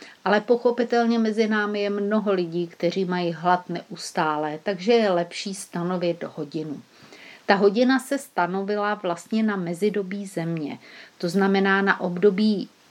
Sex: female